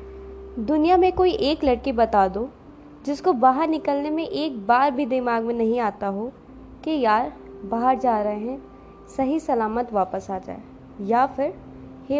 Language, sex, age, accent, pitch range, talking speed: Hindi, female, 20-39, native, 215-315 Hz, 160 wpm